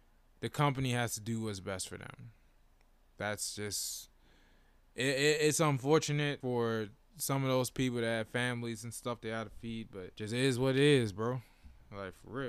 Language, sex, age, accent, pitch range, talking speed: English, male, 20-39, American, 115-145 Hz, 185 wpm